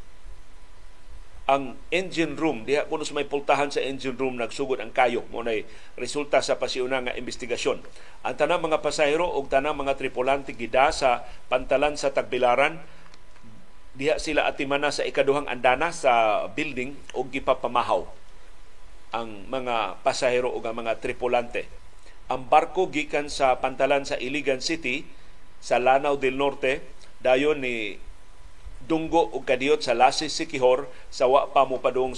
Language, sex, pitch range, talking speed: Filipino, male, 120-145 Hz, 135 wpm